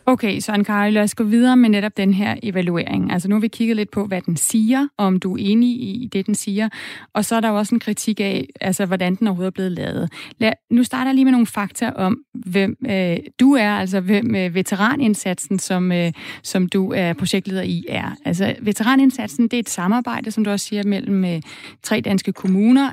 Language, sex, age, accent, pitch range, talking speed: Danish, female, 30-49, native, 195-235 Hz, 225 wpm